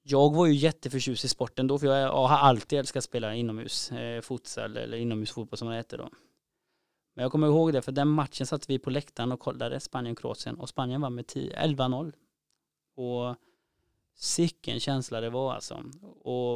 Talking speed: 190 wpm